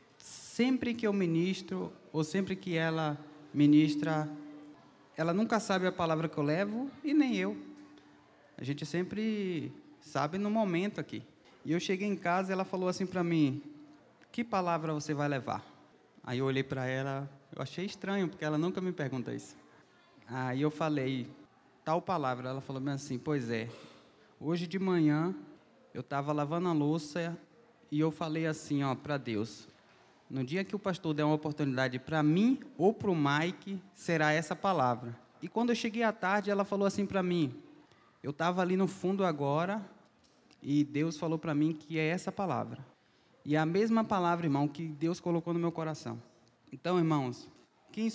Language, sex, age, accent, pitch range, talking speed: Portuguese, male, 20-39, Brazilian, 145-185 Hz, 175 wpm